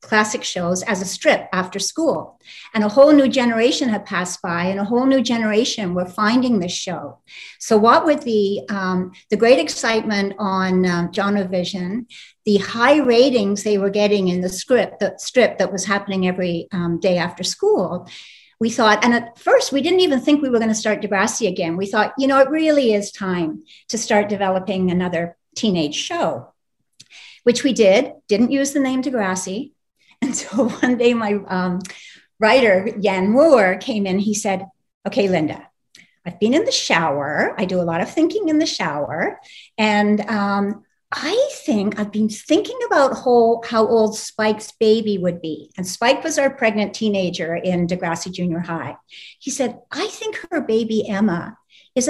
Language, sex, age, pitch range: English, female, 60-79, 185-250 Hz